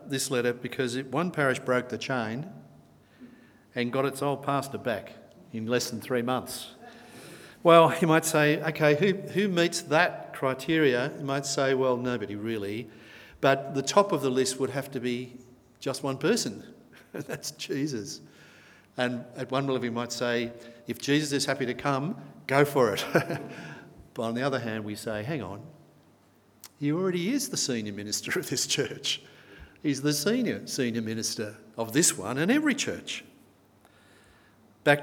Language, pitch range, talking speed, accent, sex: English, 110-145 Hz, 170 wpm, Australian, male